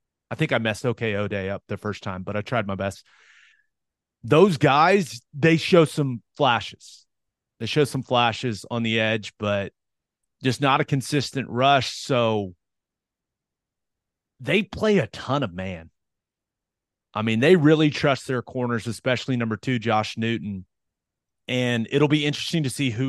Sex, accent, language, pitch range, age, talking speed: male, American, English, 110-140 Hz, 30-49, 155 wpm